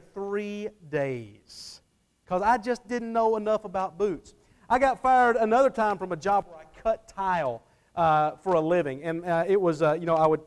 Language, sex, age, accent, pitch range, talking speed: English, male, 40-59, American, 170-245 Hz, 200 wpm